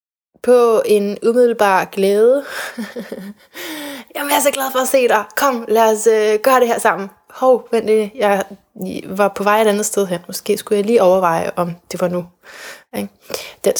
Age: 20-39